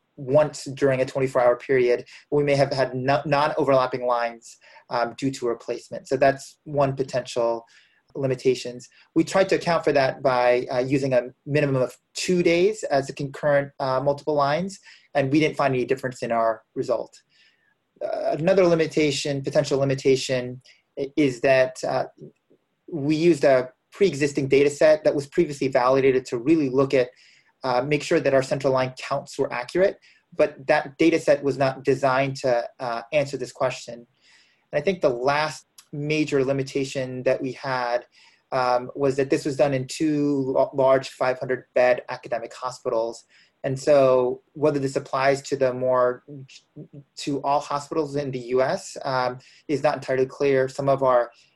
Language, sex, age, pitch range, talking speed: English, male, 30-49, 130-150 Hz, 160 wpm